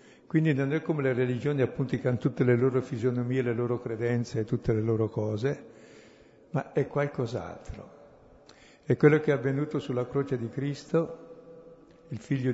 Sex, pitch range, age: male, 115-145 Hz, 60-79